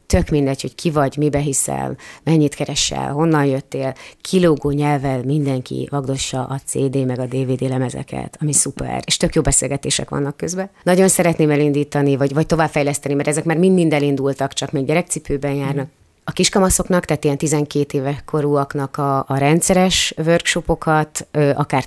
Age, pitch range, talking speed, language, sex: 30-49, 140-165 Hz, 155 wpm, Hungarian, female